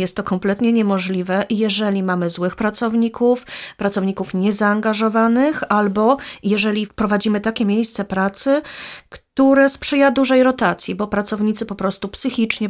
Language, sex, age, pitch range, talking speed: Polish, female, 30-49, 200-255 Hz, 120 wpm